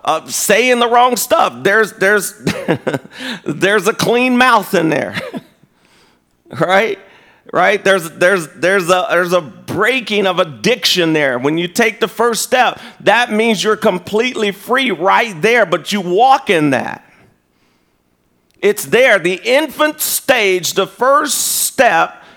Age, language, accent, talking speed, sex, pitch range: 40-59, English, American, 135 wpm, male, 170-225 Hz